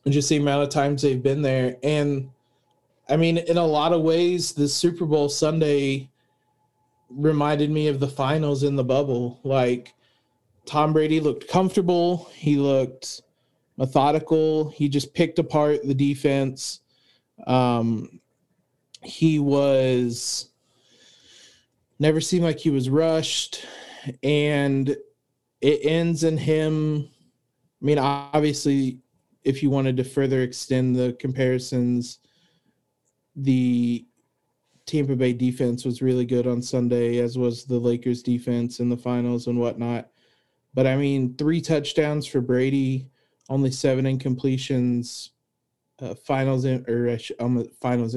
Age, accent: 30-49, American